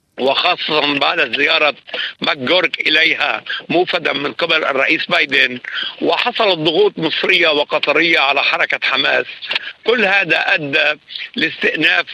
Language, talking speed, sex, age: Arabic, 110 wpm, male, 60-79